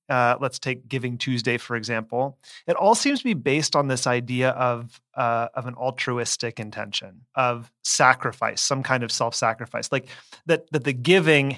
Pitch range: 125-160 Hz